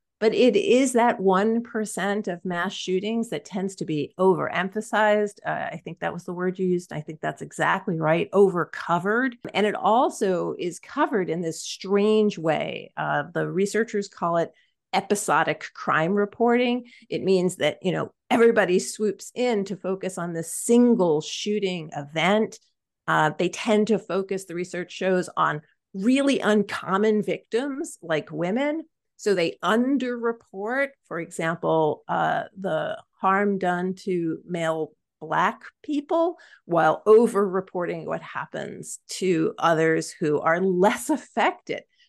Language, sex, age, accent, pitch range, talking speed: English, female, 40-59, American, 170-225 Hz, 140 wpm